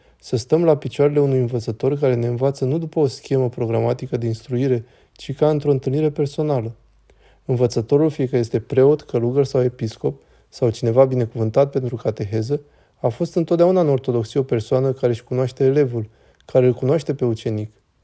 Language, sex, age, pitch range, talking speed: Romanian, male, 20-39, 120-145 Hz, 165 wpm